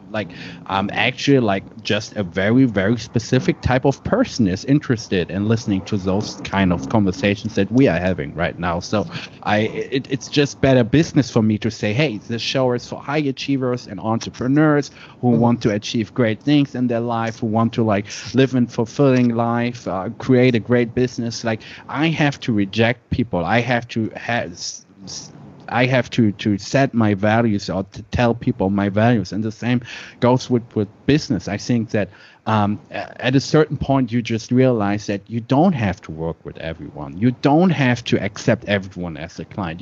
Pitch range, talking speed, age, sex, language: 105-130 Hz, 190 wpm, 30-49, male, English